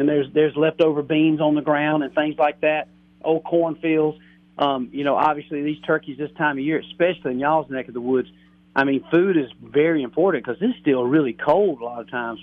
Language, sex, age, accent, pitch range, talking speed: English, male, 40-59, American, 120-150 Hz, 220 wpm